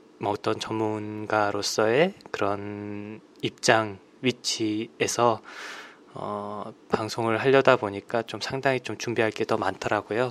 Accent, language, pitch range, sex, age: native, Korean, 105-130 Hz, male, 20-39